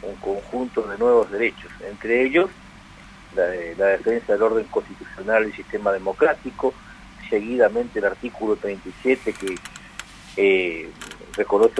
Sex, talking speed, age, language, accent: male, 120 wpm, 50-69, Spanish, Argentinian